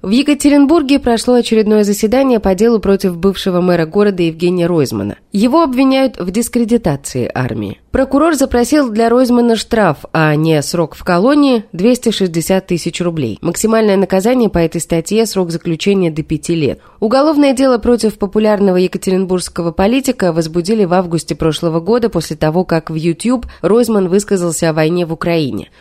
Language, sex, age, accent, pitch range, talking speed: Russian, female, 20-39, native, 165-235 Hz, 150 wpm